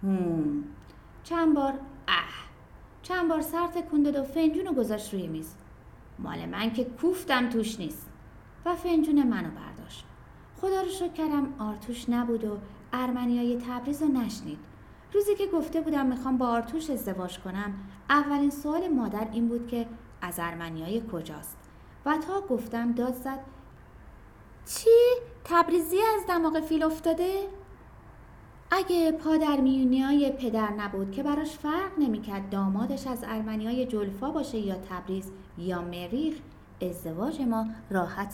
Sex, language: female, Persian